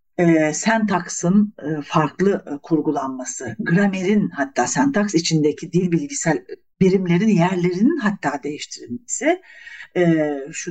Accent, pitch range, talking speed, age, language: native, 160-235 Hz, 100 wpm, 60-79, Turkish